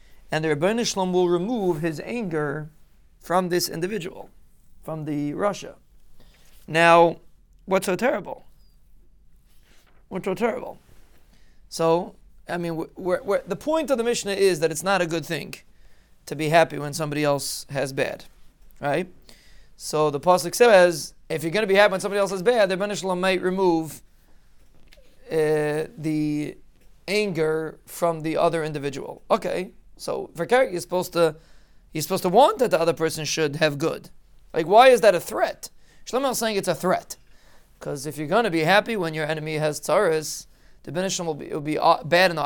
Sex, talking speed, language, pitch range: male, 170 wpm, English, 155-195 Hz